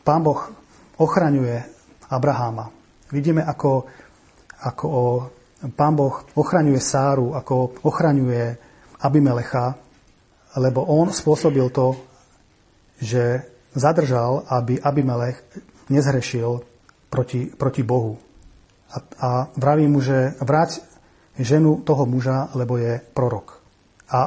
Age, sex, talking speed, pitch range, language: 40-59, male, 95 wpm, 120-145 Hz, Slovak